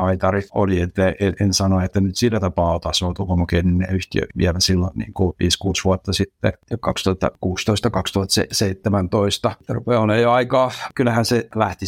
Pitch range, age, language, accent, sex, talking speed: 90-100 Hz, 60-79, Finnish, native, male, 135 wpm